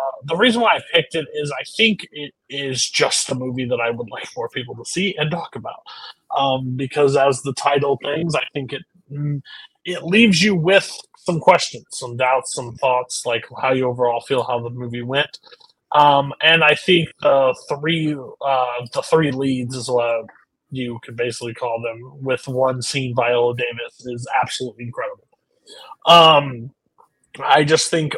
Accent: American